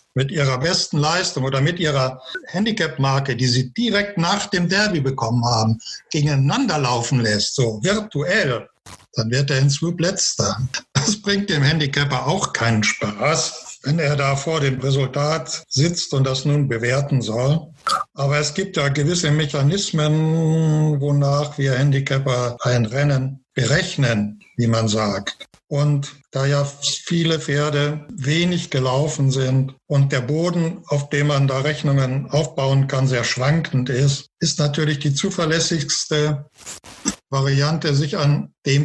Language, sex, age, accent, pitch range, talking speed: German, male, 60-79, German, 135-160 Hz, 140 wpm